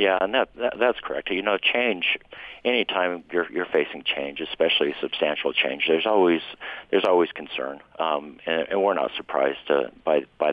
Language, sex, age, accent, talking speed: English, male, 50-69, American, 180 wpm